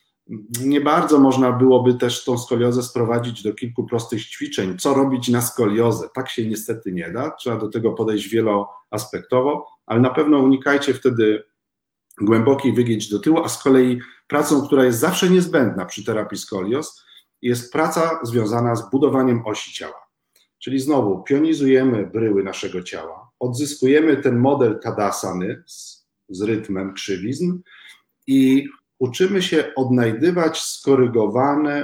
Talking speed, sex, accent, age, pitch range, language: 135 wpm, male, native, 40-59, 115-140 Hz, Polish